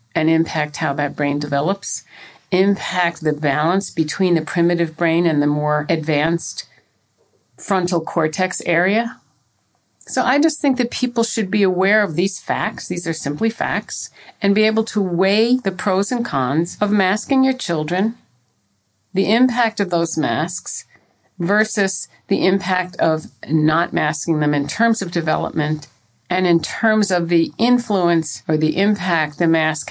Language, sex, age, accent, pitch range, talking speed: English, female, 50-69, American, 150-195 Hz, 150 wpm